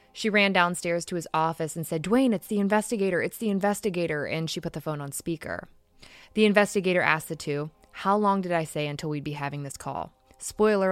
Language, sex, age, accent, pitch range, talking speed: English, female, 20-39, American, 150-195 Hz, 215 wpm